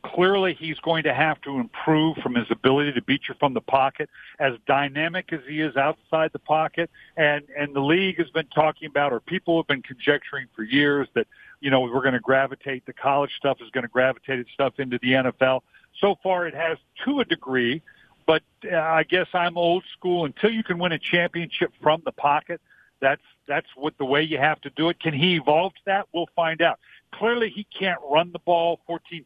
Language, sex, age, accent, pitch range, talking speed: English, male, 50-69, American, 140-170 Hz, 215 wpm